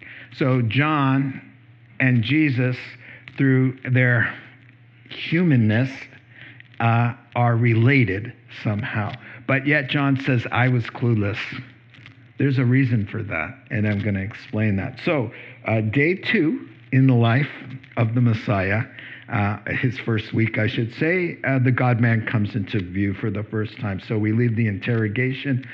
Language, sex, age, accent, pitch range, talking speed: English, male, 60-79, American, 115-130 Hz, 140 wpm